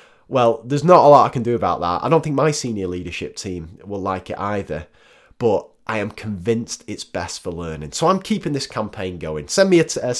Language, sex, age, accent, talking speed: English, male, 30-49, British, 235 wpm